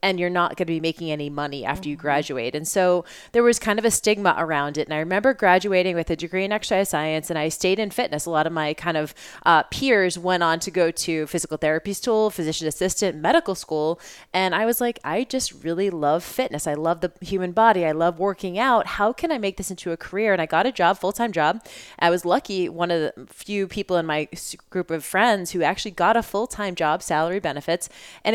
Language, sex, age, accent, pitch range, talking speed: English, female, 20-39, American, 160-200 Hz, 235 wpm